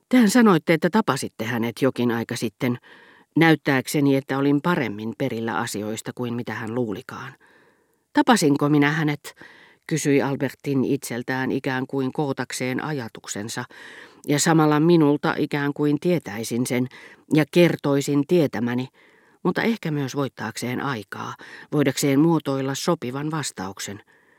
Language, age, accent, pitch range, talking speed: Finnish, 40-59, native, 125-160 Hz, 115 wpm